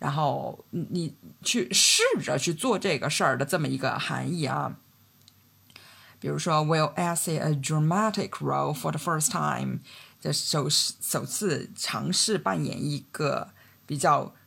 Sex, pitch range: female, 150-225 Hz